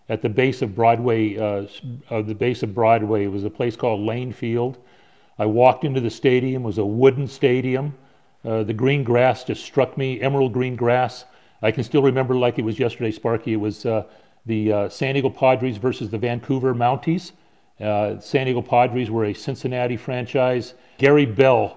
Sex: male